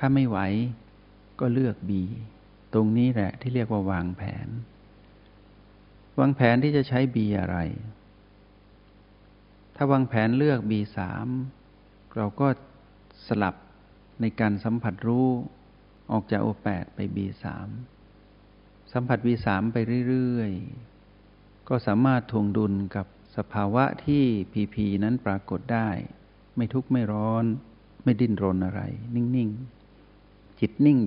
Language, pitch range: Thai, 100-120 Hz